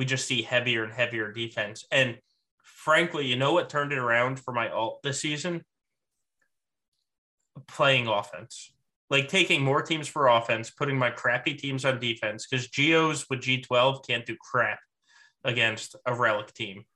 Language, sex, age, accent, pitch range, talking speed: English, male, 20-39, American, 120-150 Hz, 165 wpm